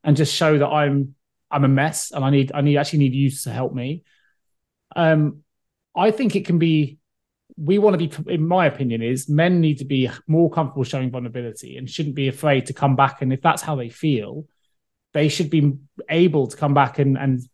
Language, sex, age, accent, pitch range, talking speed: English, male, 20-39, British, 135-165 Hz, 215 wpm